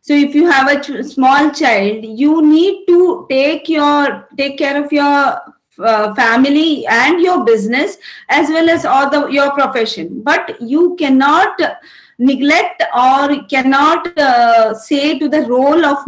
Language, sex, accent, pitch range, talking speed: English, female, Indian, 250-320 Hz, 155 wpm